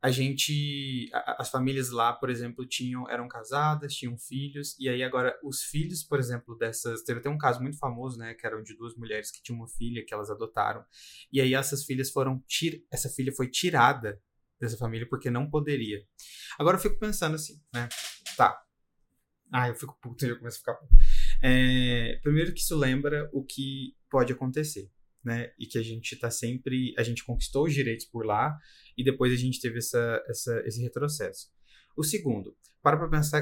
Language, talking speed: Portuguese, 195 wpm